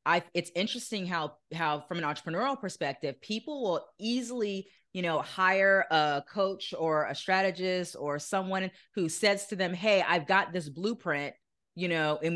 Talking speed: 165 wpm